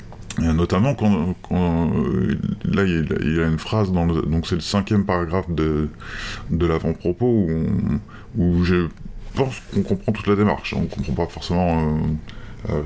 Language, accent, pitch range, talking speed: French, French, 85-110 Hz, 160 wpm